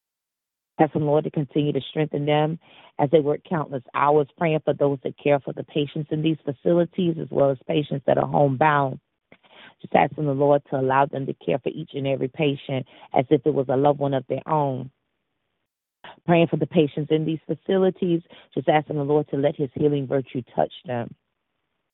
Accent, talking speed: American, 200 wpm